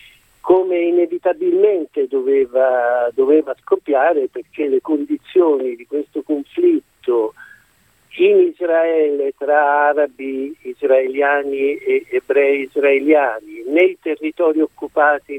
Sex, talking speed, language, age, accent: male, 85 wpm, Italian, 50-69, native